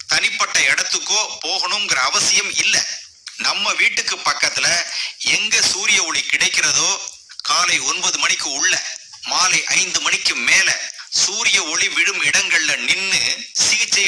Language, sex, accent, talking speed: Tamil, male, native, 105 wpm